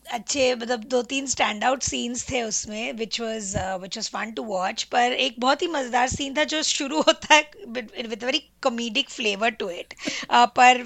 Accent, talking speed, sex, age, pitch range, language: native, 180 wpm, female, 20-39, 230-270 Hz, Hindi